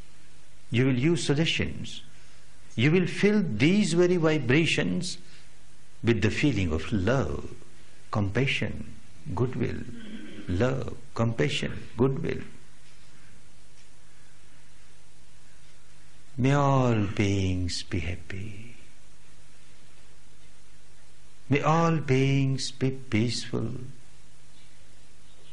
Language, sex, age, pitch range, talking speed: Hindi, male, 60-79, 95-135 Hz, 70 wpm